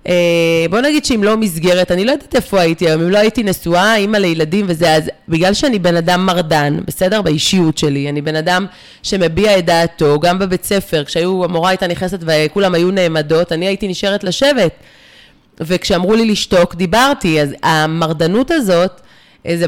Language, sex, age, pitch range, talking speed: Hebrew, female, 20-39, 160-200 Hz, 170 wpm